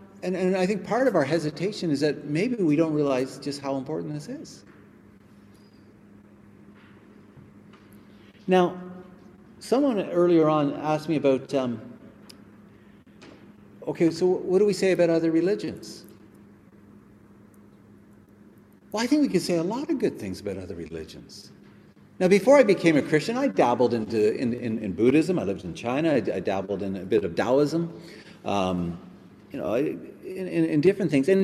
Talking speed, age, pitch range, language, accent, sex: 160 wpm, 50-69, 120-195 Hz, English, American, male